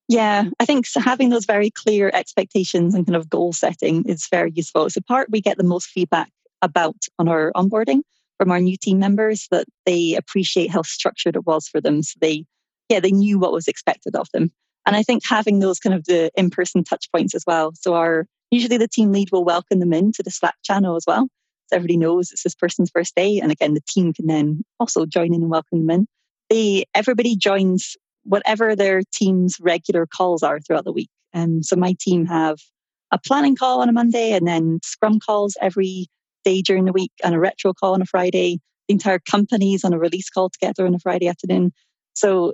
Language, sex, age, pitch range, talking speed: English, female, 20-39, 170-205 Hz, 215 wpm